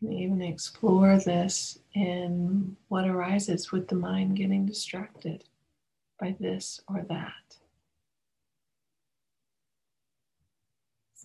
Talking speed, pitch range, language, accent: 90 wpm, 170-195 Hz, English, American